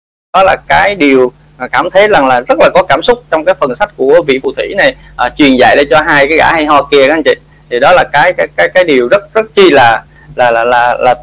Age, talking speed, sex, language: 20-39, 290 wpm, male, Vietnamese